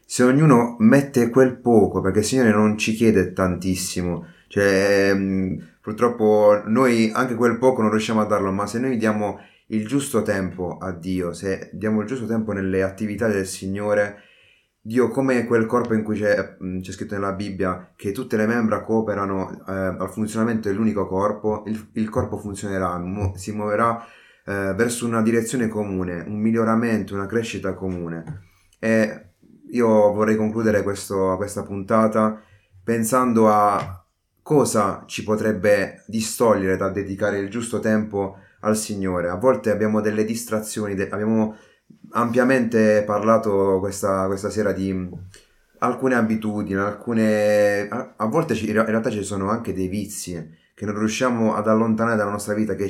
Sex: male